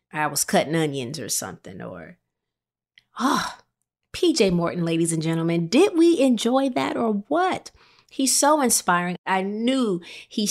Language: English